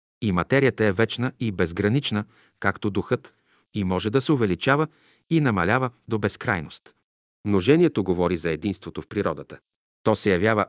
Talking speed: 145 wpm